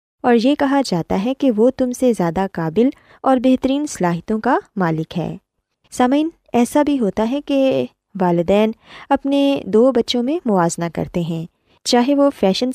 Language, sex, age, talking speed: Urdu, female, 20-39, 160 wpm